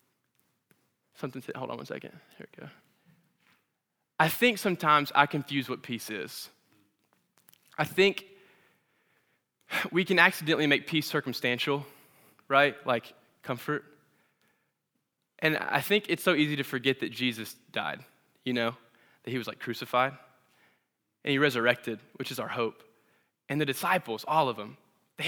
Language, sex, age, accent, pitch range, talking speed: English, male, 10-29, American, 135-190 Hz, 140 wpm